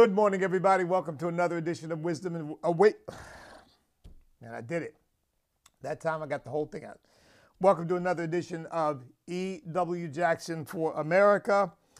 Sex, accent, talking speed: male, American, 160 wpm